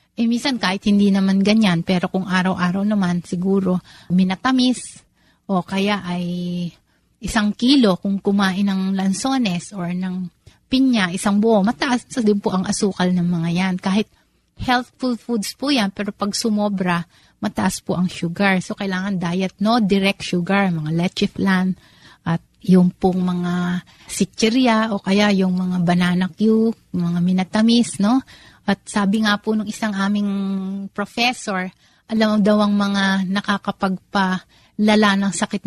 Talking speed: 145 wpm